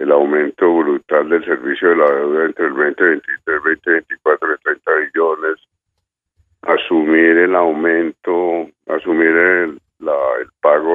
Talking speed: 130 wpm